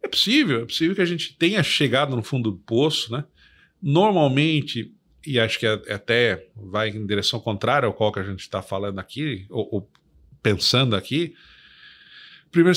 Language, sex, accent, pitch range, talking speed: Portuguese, male, Brazilian, 110-145 Hz, 170 wpm